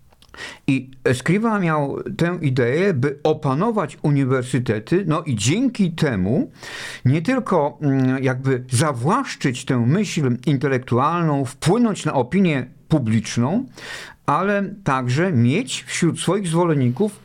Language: Polish